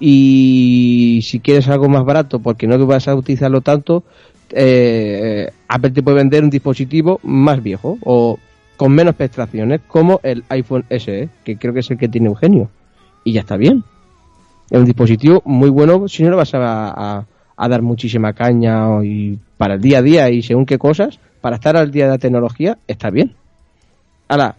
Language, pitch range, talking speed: Spanish, 110-140 Hz, 190 wpm